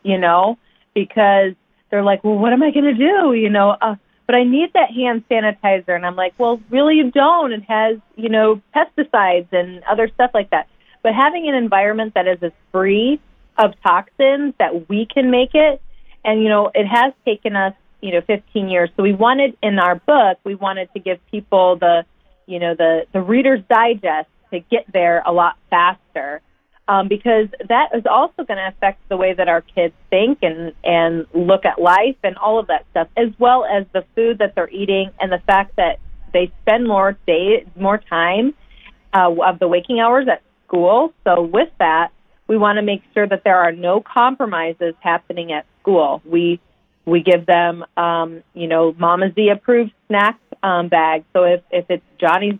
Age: 30-49